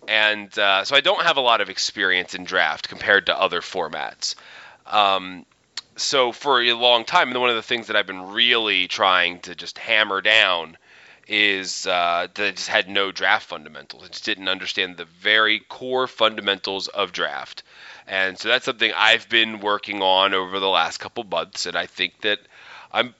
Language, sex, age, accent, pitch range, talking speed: English, male, 30-49, American, 100-145 Hz, 185 wpm